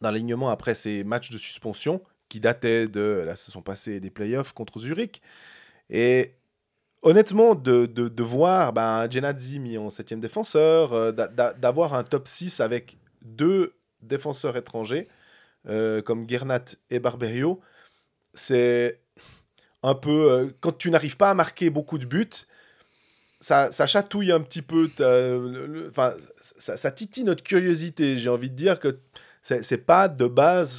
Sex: male